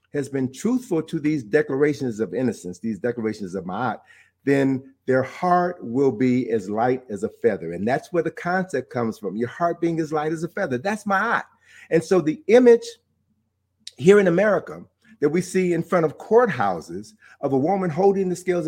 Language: English